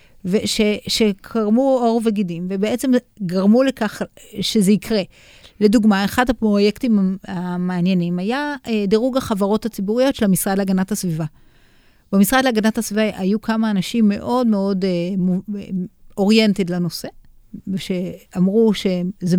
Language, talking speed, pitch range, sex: Hebrew, 100 wpm, 185-230 Hz, female